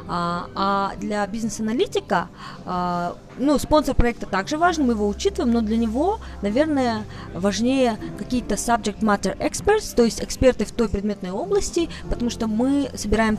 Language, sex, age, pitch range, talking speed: Russian, female, 20-39, 200-245 Hz, 140 wpm